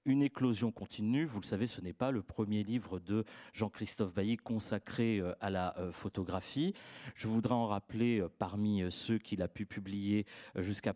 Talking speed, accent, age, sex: 180 wpm, French, 30-49, male